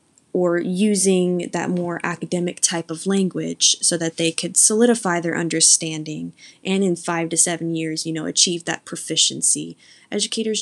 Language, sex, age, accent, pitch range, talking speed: English, female, 10-29, American, 165-195 Hz, 155 wpm